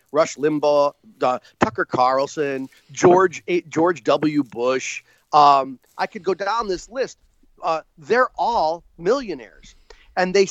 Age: 40-59